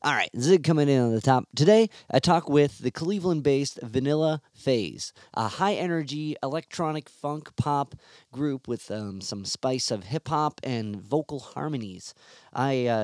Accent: American